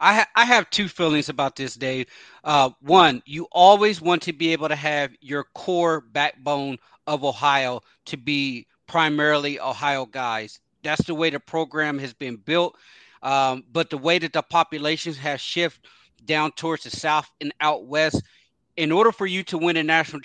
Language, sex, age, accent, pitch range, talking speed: English, male, 30-49, American, 140-165 Hz, 175 wpm